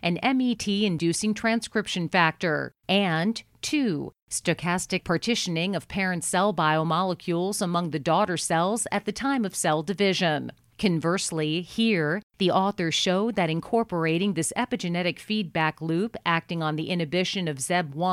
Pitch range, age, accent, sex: 165-205 Hz, 40-59, American, female